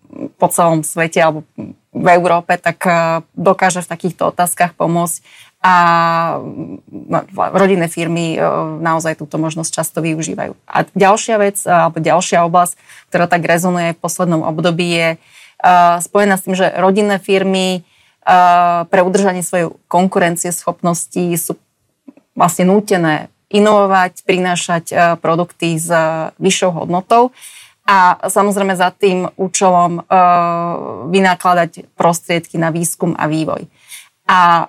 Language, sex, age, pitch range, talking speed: Slovak, female, 30-49, 165-185 Hz, 115 wpm